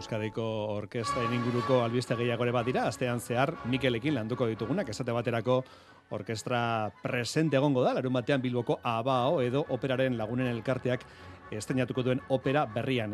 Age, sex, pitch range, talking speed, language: 40-59, male, 125-160 Hz, 135 wpm, Spanish